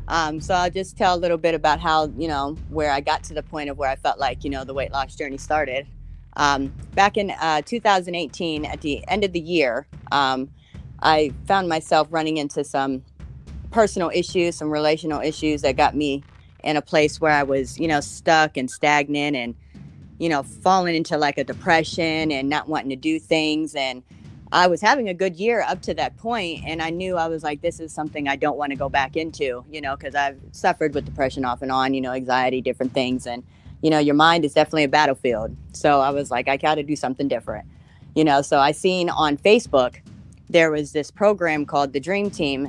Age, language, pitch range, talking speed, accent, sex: 30-49, English, 140-165 Hz, 220 wpm, American, female